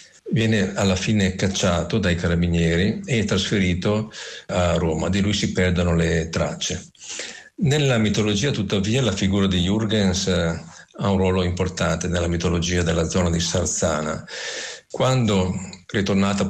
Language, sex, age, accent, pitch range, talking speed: Italian, male, 50-69, native, 90-105 Hz, 125 wpm